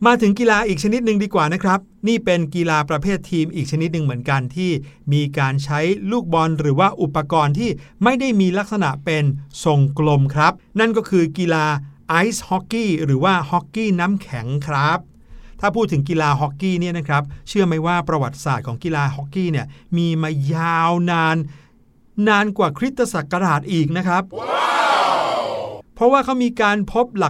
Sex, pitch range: male, 145-195 Hz